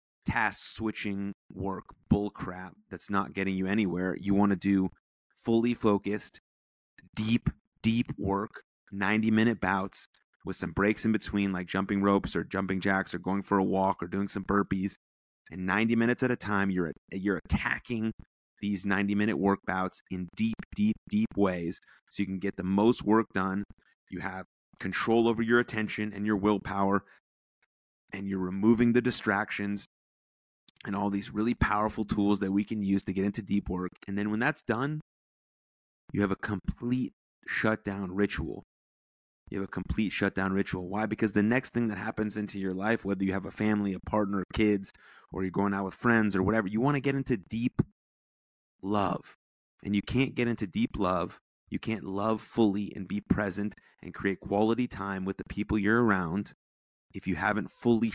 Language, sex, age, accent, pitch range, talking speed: English, male, 30-49, American, 95-110 Hz, 180 wpm